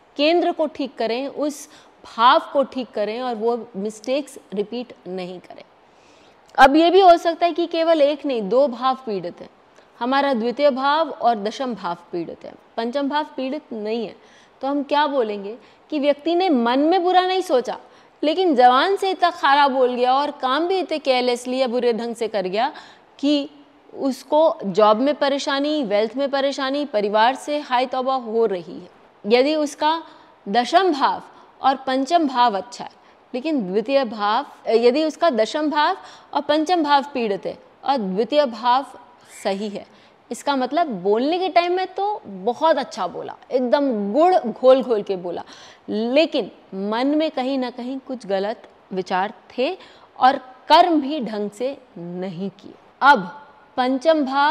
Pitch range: 225-300 Hz